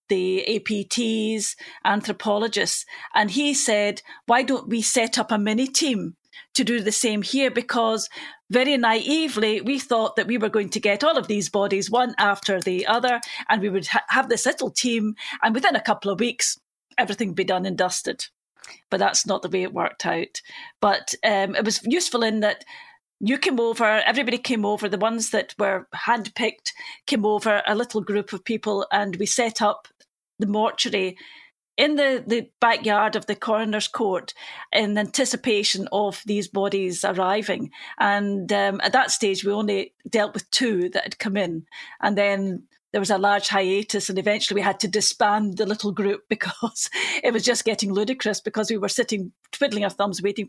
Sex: female